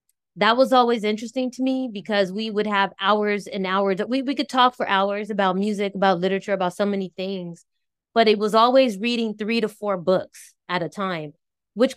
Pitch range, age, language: 190-225 Hz, 20-39, English